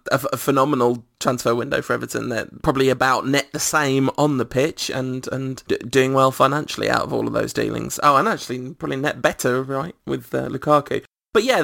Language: English